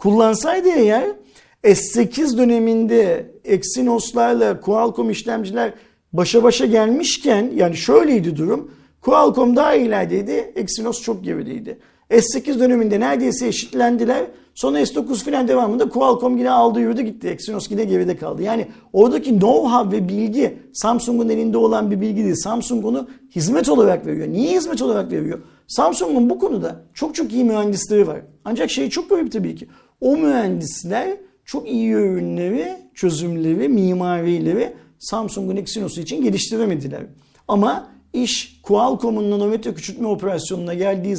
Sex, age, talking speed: male, 50-69, 130 wpm